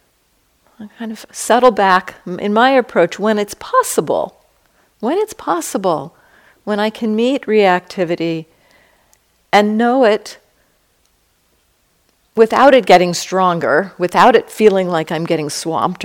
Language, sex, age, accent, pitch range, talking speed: English, female, 50-69, American, 160-215 Hz, 125 wpm